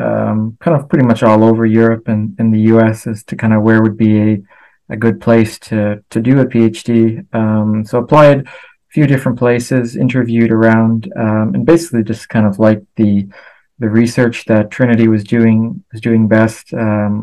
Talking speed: 190 wpm